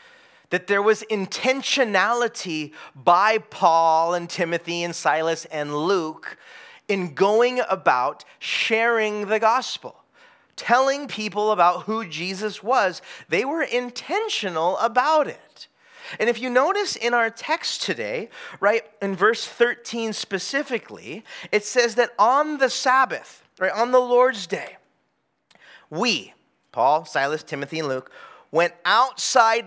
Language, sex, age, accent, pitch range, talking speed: English, male, 30-49, American, 175-235 Hz, 125 wpm